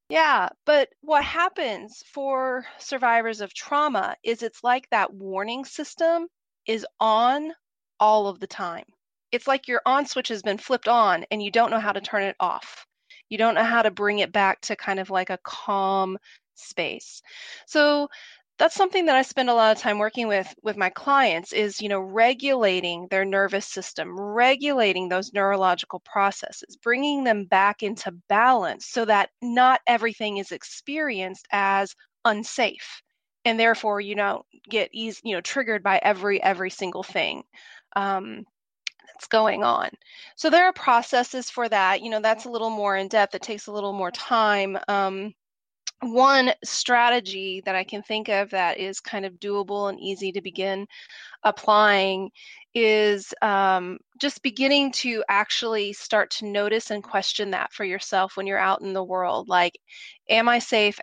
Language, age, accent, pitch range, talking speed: English, 30-49, American, 195-250 Hz, 170 wpm